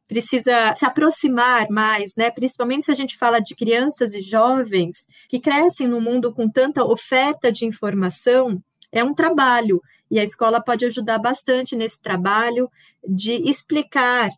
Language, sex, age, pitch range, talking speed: Portuguese, female, 20-39, 215-260 Hz, 150 wpm